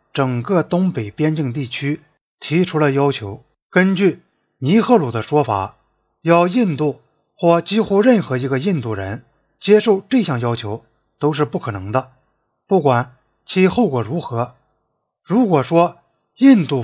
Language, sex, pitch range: Chinese, male, 120-180 Hz